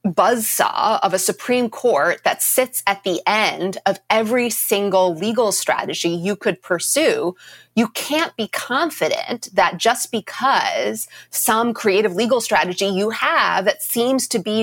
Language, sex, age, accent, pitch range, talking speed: English, female, 30-49, American, 180-230 Hz, 145 wpm